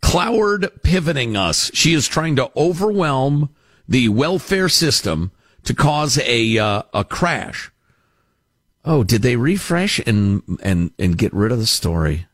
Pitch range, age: 115-185 Hz, 50-69